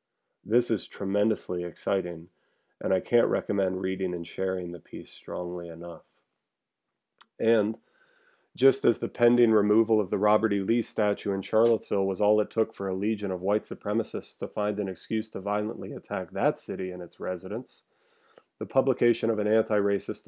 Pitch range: 95-110 Hz